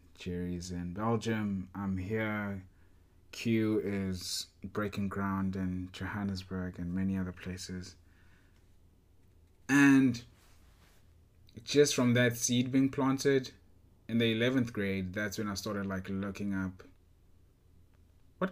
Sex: male